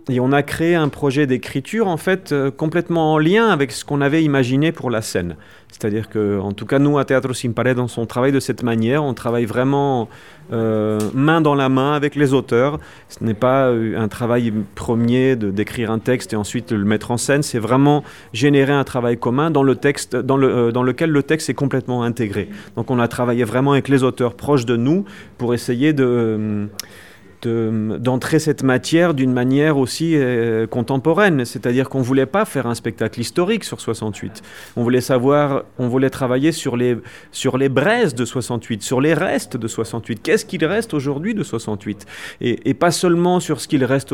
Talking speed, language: 205 wpm, French